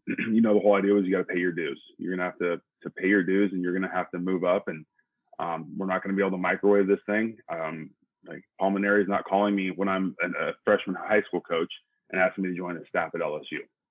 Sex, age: male, 20-39